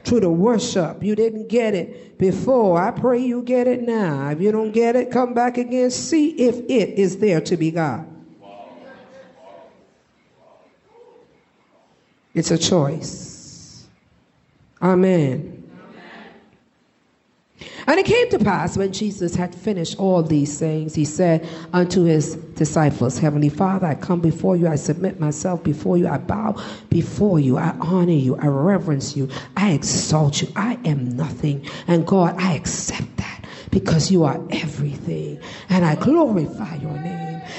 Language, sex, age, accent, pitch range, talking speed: English, female, 50-69, American, 155-230 Hz, 145 wpm